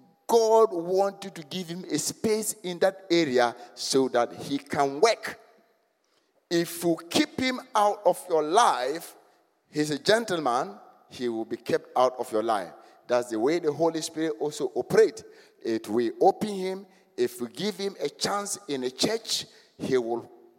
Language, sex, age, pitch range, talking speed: English, male, 50-69, 140-225 Hz, 165 wpm